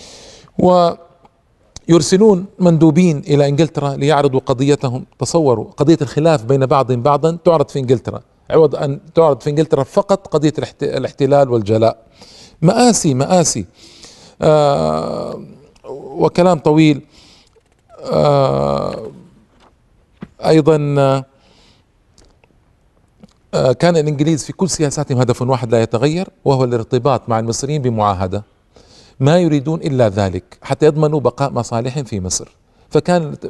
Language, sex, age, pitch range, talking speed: Arabic, male, 50-69, 130-165 Hz, 95 wpm